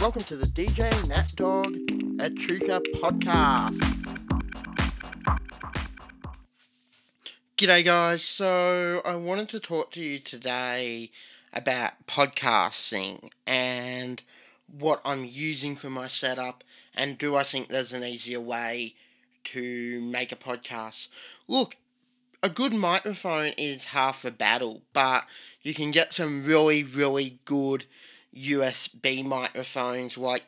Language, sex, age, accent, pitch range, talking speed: English, male, 20-39, Australian, 125-150 Hz, 115 wpm